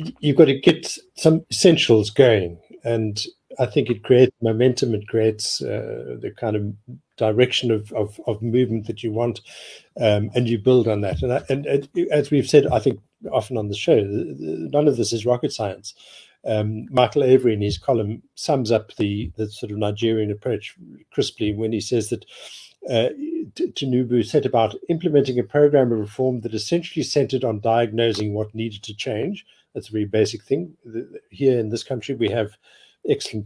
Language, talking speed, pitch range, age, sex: English, 180 wpm, 110-130 Hz, 60-79, male